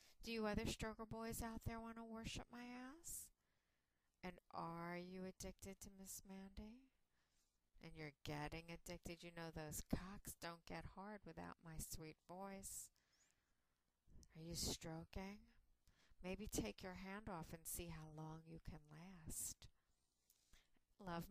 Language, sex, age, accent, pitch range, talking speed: English, female, 40-59, American, 145-205 Hz, 140 wpm